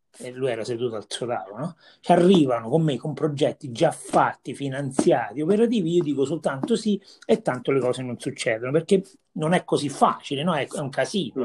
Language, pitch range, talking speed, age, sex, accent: Italian, 130-185 Hz, 185 wpm, 30-49, male, native